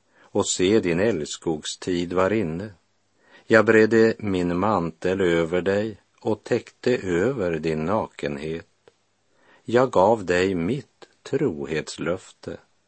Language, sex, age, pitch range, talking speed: Swedish, male, 50-69, 85-105 Hz, 105 wpm